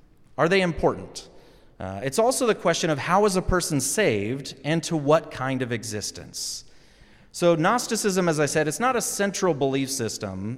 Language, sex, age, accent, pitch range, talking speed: English, male, 30-49, American, 115-160 Hz, 175 wpm